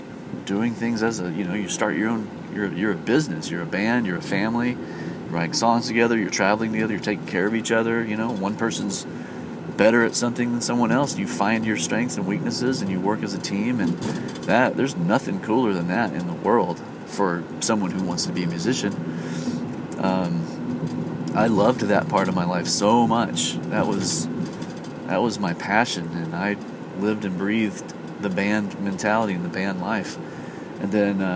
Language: English